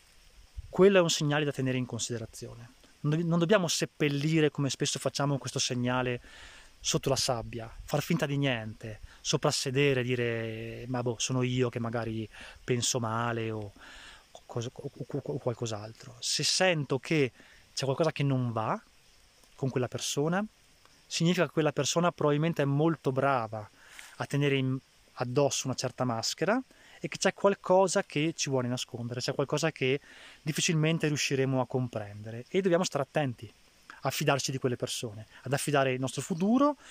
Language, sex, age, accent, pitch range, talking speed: Italian, male, 20-39, native, 125-155 Hz, 155 wpm